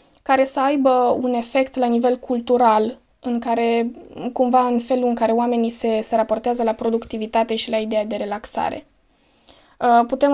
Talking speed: 165 wpm